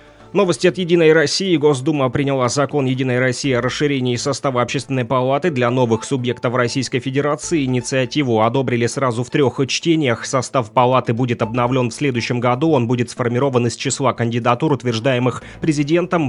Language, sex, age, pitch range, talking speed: Russian, male, 30-49, 120-145 Hz, 145 wpm